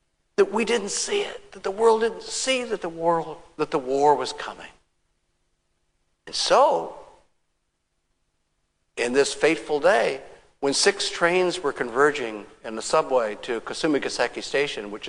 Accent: American